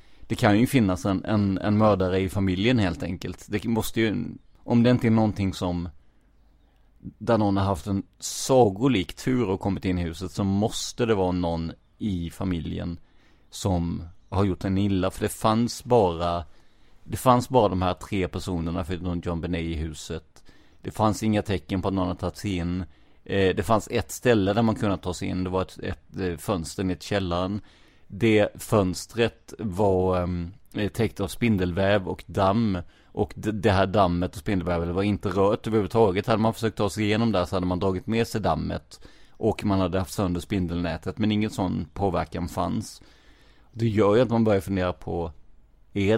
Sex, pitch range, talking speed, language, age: male, 90-110 Hz, 185 wpm, English, 30-49